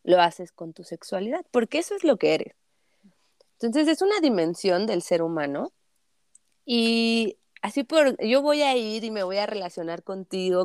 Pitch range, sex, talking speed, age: 170-240 Hz, female, 175 wpm, 30-49